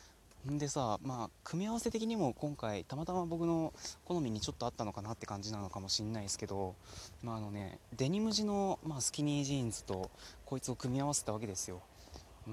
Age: 20-39